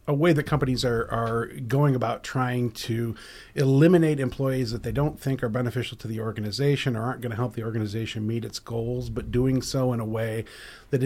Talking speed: 205 wpm